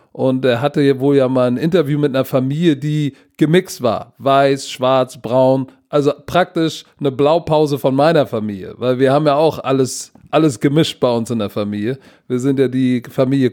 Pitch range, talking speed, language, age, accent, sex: 135-165 Hz, 190 wpm, German, 40-59, German, male